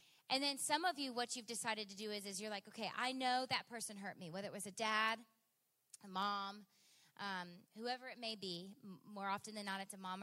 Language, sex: English, female